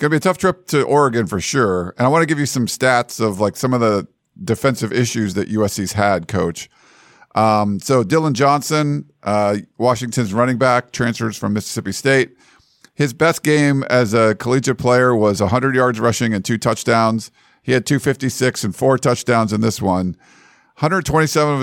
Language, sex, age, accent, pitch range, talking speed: English, male, 50-69, American, 105-135 Hz, 180 wpm